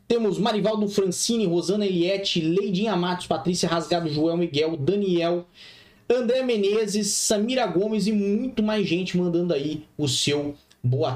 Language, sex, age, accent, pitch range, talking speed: Portuguese, male, 20-39, Brazilian, 140-195 Hz, 135 wpm